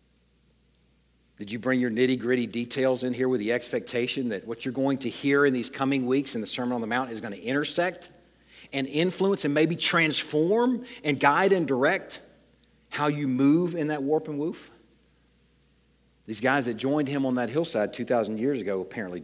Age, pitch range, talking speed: 50-69, 95-140 Hz, 185 wpm